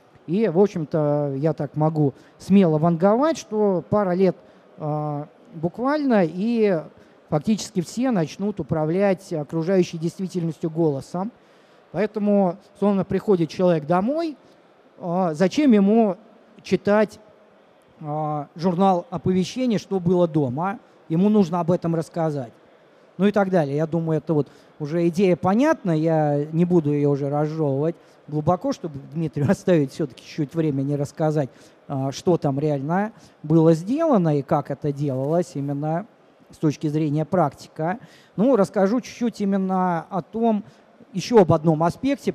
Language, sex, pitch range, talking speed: Russian, male, 155-200 Hz, 125 wpm